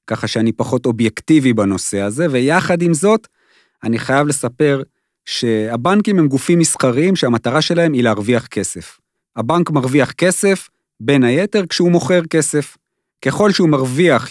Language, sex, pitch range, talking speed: Hebrew, male, 125-175 Hz, 135 wpm